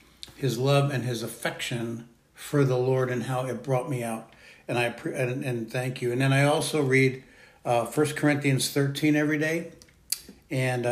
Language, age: English, 70-89